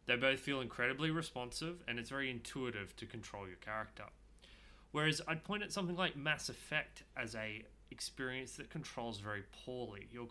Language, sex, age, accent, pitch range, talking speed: English, male, 20-39, Australian, 110-145 Hz, 170 wpm